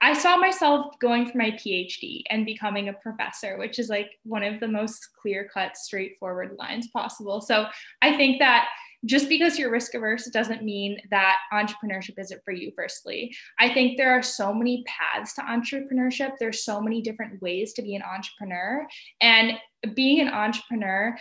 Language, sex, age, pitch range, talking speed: English, female, 10-29, 200-245 Hz, 175 wpm